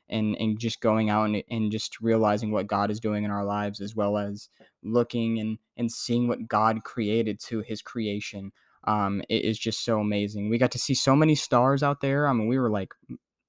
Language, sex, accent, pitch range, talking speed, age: English, male, American, 110-130 Hz, 220 wpm, 10-29